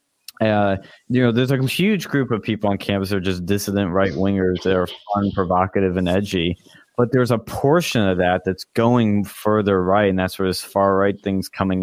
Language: English